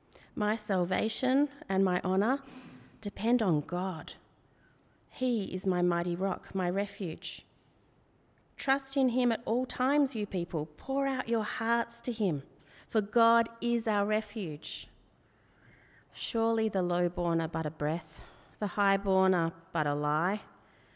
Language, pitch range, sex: English, 170-220 Hz, female